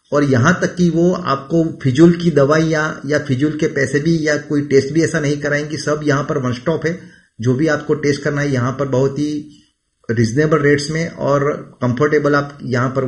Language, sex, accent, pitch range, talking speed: Gujarati, male, native, 135-165 Hz, 210 wpm